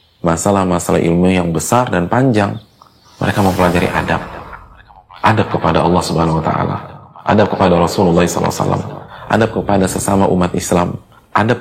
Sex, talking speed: male, 130 wpm